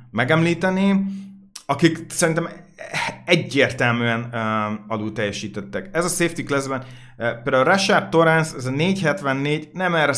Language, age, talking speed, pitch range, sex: Hungarian, 30-49, 105 wpm, 120-155 Hz, male